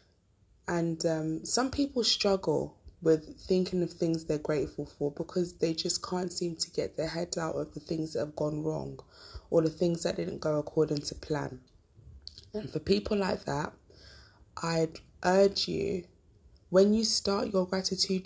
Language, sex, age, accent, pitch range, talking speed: English, female, 20-39, British, 160-190 Hz, 170 wpm